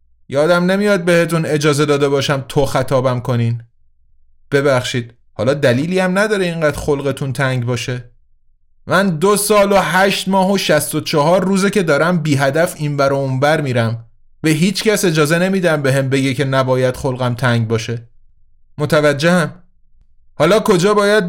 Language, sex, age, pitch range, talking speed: Persian, male, 30-49, 125-185 Hz, 155 wpm